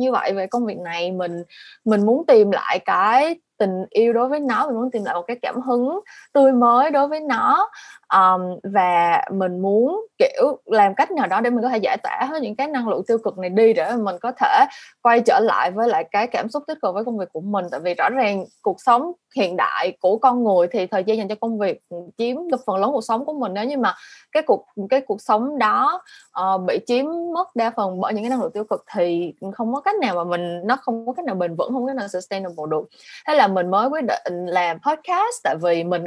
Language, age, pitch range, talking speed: Vietnamese, 20-39, 190-275 Hz, 250 wpm